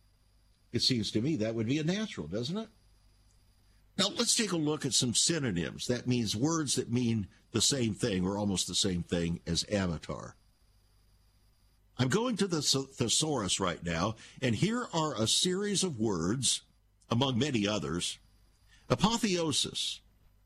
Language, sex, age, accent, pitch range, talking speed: English, male, 60-79, American, 100-135 Hz, 155 wpm